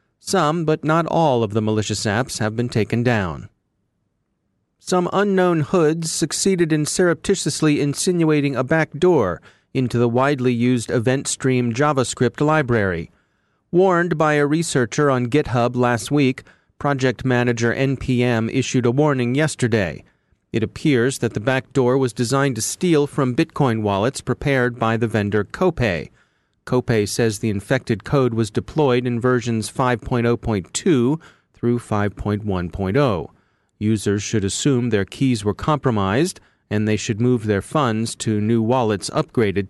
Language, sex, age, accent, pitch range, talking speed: English, male, 40-59, American, 110-145 Hz, 135 wpm